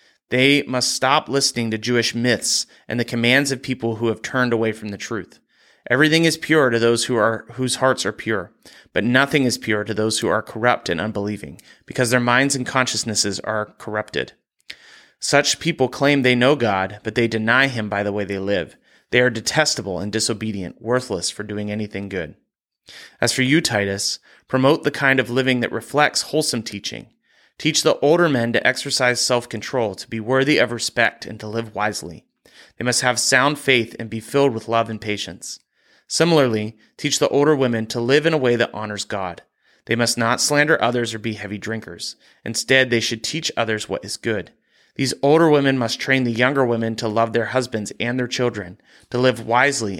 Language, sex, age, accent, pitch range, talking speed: English, male, 30-49, American, 110-130 Hz, 190 wpm